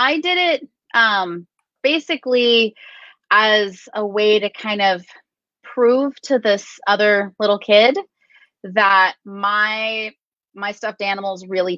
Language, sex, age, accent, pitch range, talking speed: English, female, 20-39, American, 190-245 Hz, 115 wpm